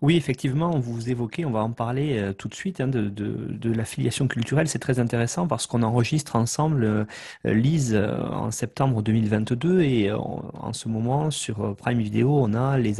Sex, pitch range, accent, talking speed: male, 115-160 Hz, French, 200 wpm